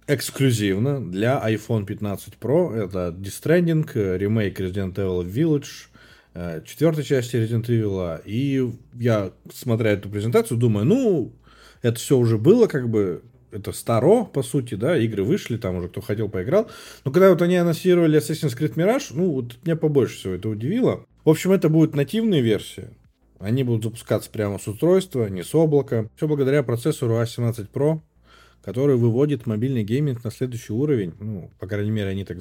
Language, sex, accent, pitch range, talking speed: Russian, male, native, 105-150 Hz, 165 wpm